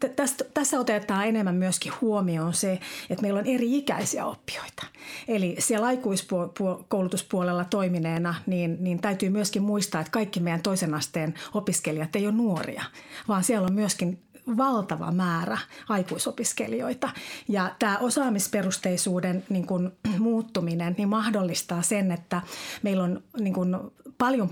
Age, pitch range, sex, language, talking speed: 30-49, 185-225 Hz, female, Finnish, 130 wpm